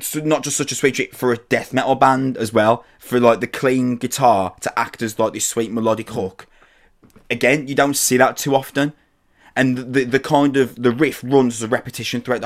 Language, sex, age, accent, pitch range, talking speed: English, male, 20-39, British, 105-130 Hz, 215 wpm